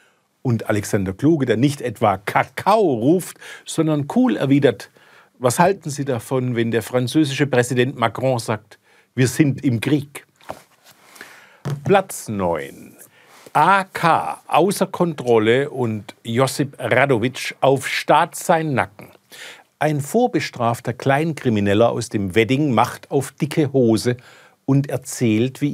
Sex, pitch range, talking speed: male, 115-150 Hz, 115 wpm